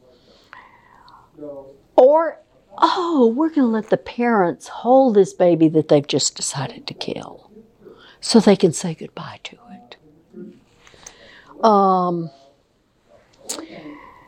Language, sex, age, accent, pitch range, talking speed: English, female, 60-79, American, 155-220 Hz, 105 wpm